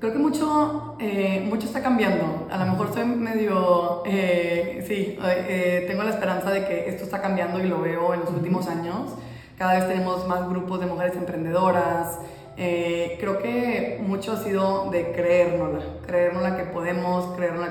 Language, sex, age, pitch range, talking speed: Spanish, female, 20-39, 170-185 Hz, 170 wpm